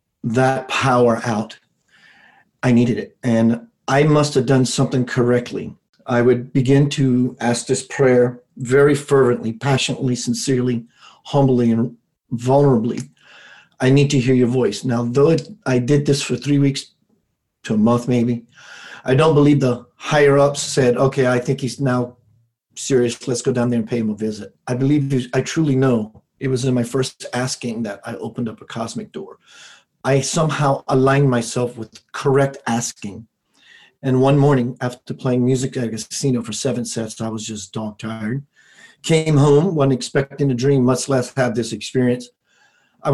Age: 40-59